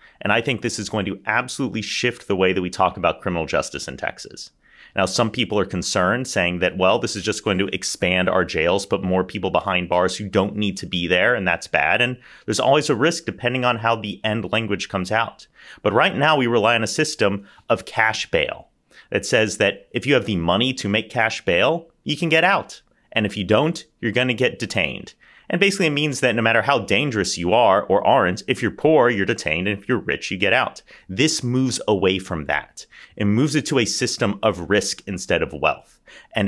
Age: 30-49